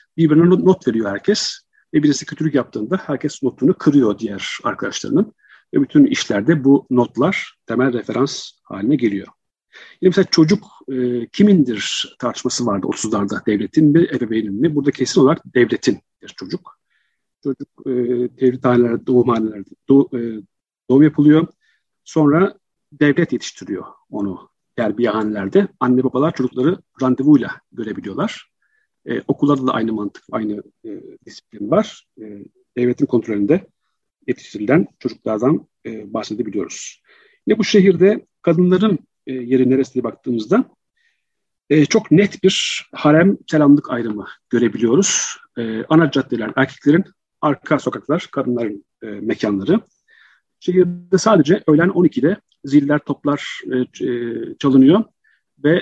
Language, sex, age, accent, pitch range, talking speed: Turkish, male, 50-69, native, 125-175 Hz, 115 wpm